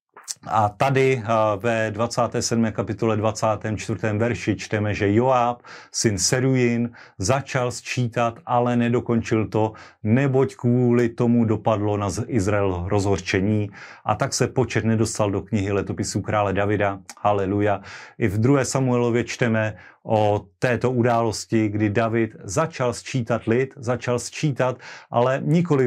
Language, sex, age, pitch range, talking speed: Slovak, male, 40-59, 110-130 Hz, 120 wpm